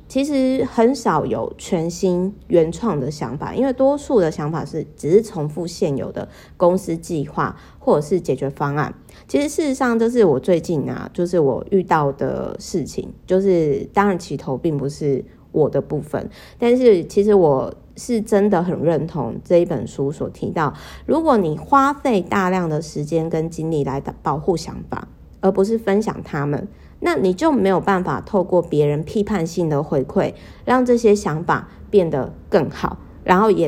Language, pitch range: Chinese, 155-205 Hz